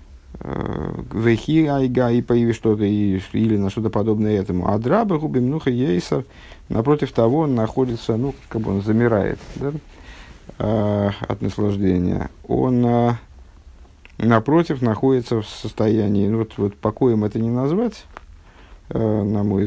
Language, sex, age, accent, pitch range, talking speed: Russian, male, 50-69, native, 100-125 Hz, 125 wpm